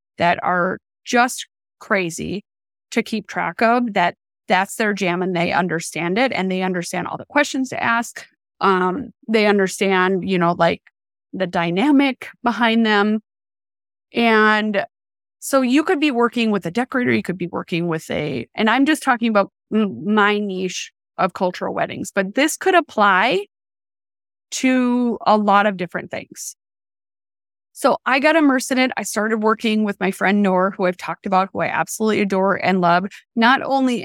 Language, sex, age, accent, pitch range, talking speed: English, female, 20-39, American, 180-225 Hz, 165 wpm